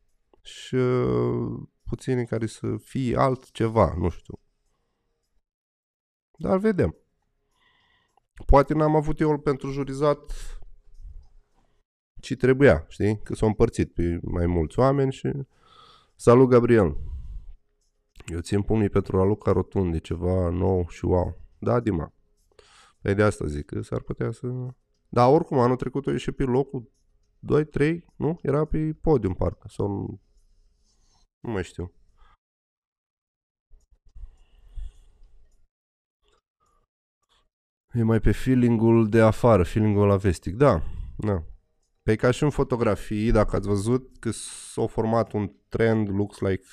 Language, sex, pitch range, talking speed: Romanian, male, 90-125 Hz, 125 wpm